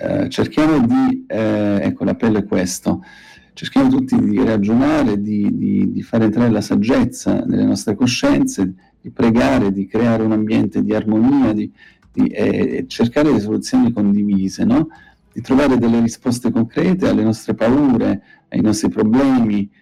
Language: Italian